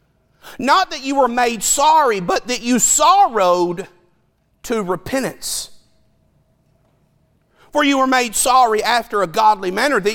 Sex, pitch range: male, 205-275 Hz